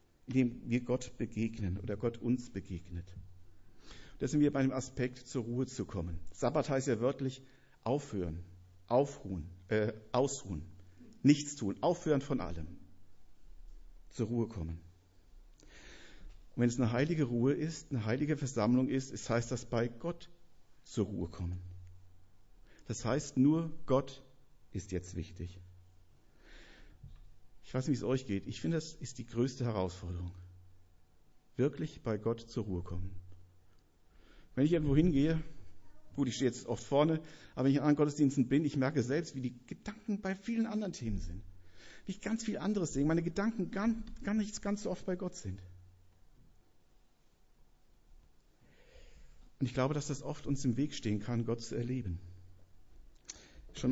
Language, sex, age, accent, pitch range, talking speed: German, male, 50-69, German, 90-140 Hz, 155 wpm